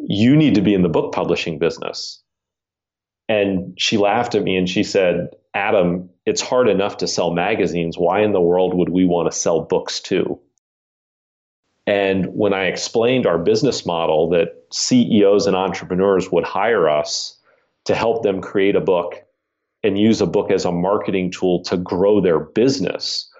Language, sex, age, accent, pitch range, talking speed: English, male, 40-59, American, 85-105 Hz, 170 wpm